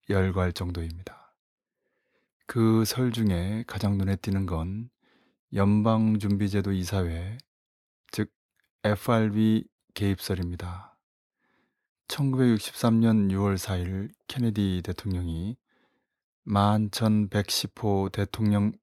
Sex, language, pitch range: male, Korean, 100-115 Hz